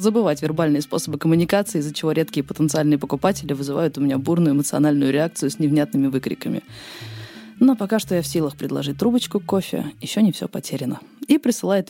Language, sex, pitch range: Russian, female, 150-205 Hz